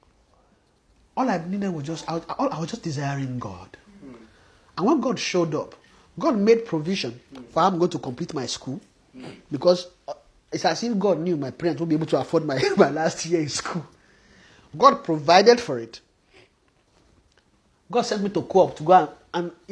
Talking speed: 170 wpm